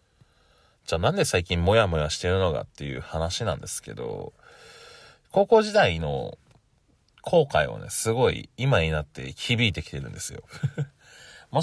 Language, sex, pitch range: Japanese, male, 80-115 Hz